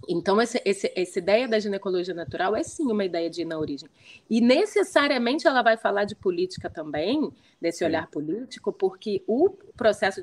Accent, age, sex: Brazilian, 30-49, female